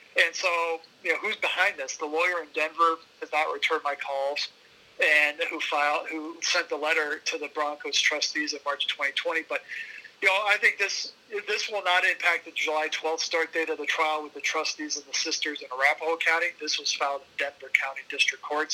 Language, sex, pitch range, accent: English, male, 150-175 Hz, American